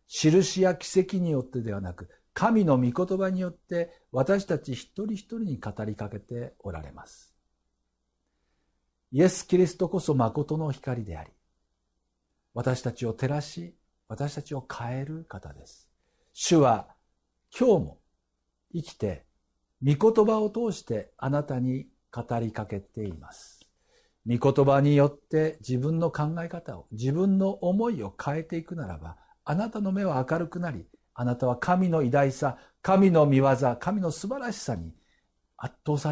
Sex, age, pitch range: male, 60-79, 100-155 Hz